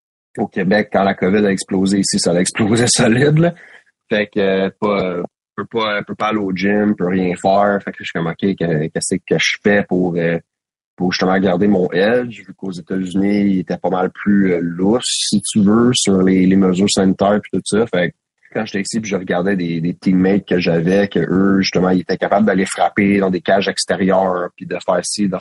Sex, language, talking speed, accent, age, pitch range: male, French, 230 wpm, Canadian, 30-49, 90-100 Hz